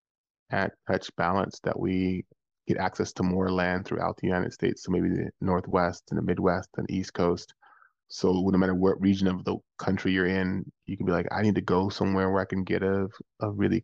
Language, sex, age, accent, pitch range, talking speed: English, male, 20-39, American, 95-100 Hz, 215 wpm